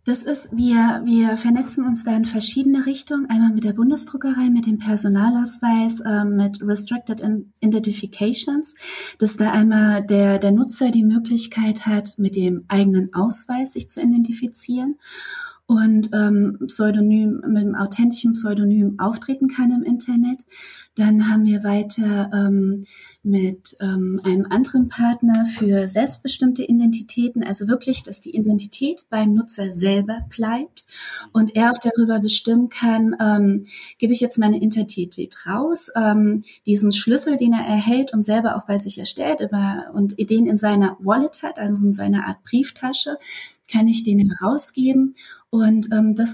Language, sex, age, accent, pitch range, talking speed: German, female, 30-49, German, 205-240 Hz, 150 wpm